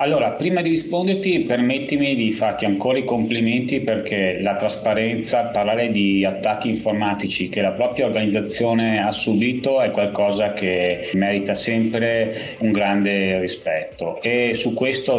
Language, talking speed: Italian, 135 wpm